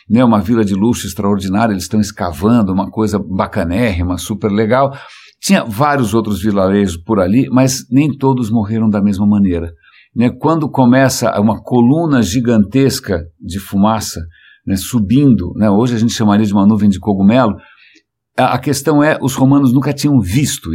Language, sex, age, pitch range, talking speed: English, male, 60-79, 100-130 Hz, 160 wpm